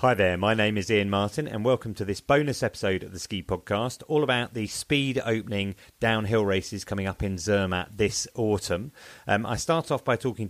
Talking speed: 205 wpm